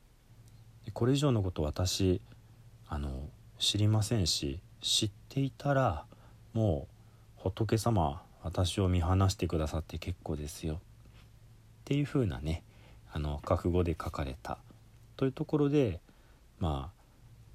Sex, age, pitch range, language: male, 40-59, 80-115 Hz, Japanese